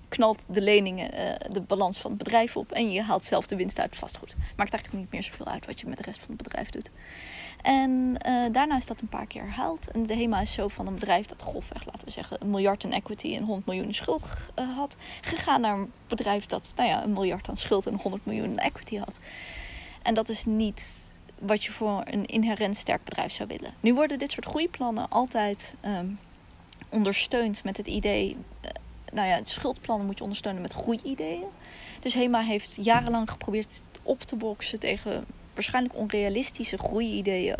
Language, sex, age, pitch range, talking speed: Dutch, female, 20-39, 200-240 Hz, 205 wpm